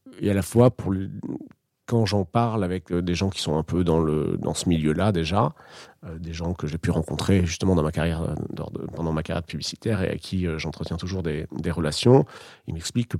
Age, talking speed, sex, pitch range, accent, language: 40-59, 225 wpm, male, 85-110 Hz, French, French